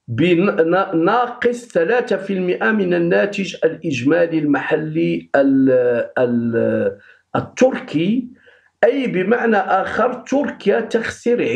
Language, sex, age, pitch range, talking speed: Arabic, male, 50-69, 135-195 Hz, 75 wpm